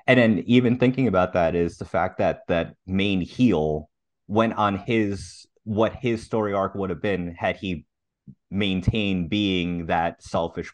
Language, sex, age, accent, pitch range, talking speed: English, male, 30-49, American, 80-105 Hz, 160 wpm